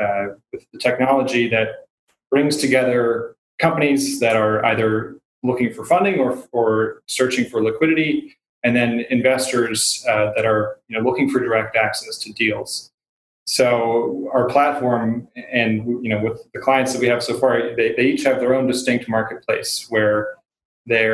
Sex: male